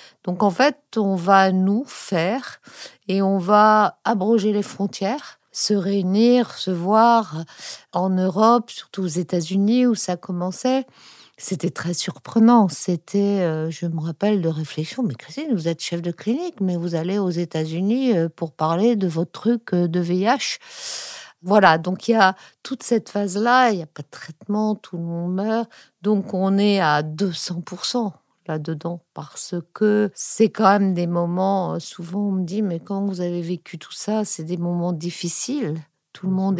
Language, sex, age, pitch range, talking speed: French, female, 60-79, 175-210 Hz, 170 wpm